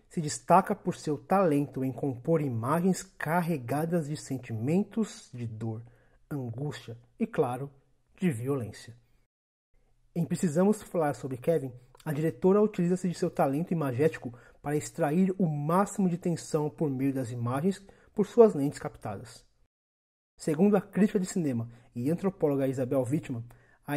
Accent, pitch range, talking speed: Brazilian, 130-180 Hz, 135 wpm